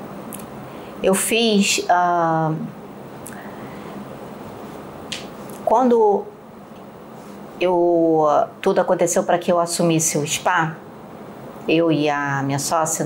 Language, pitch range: Portuguese, 170-220 Hz